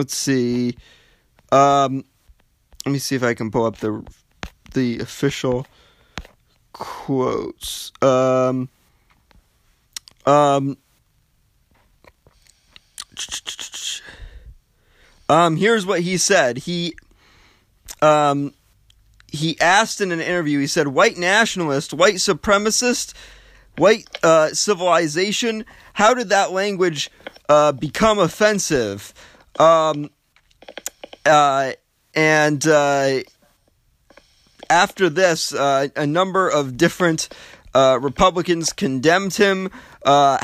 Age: 30-49